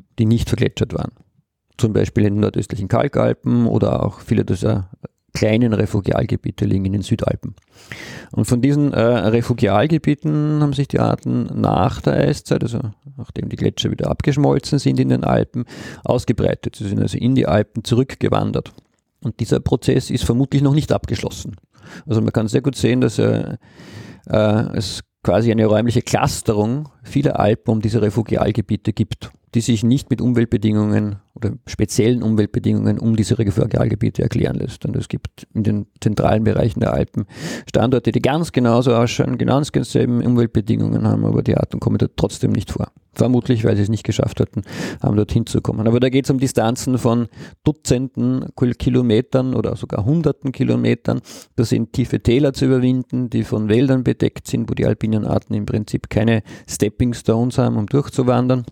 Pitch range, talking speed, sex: 110-130 Hz, 165 wpm, male